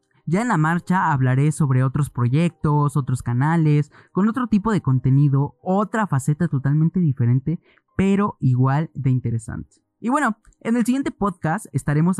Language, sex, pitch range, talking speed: Spanish, male, 135-175 Hz, 150 wpm